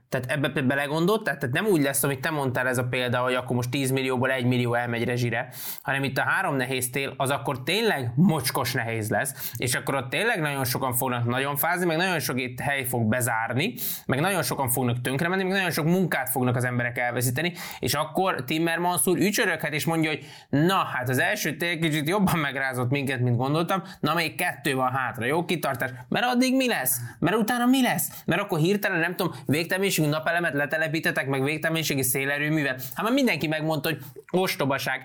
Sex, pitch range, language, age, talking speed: male, 130-170 Hz, Hungarian, 20-39, 200 wpm